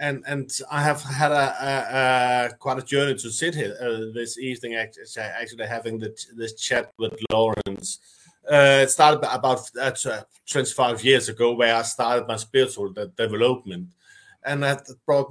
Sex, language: male, English